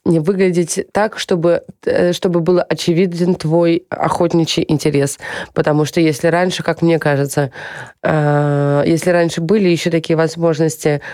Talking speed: 125 wpm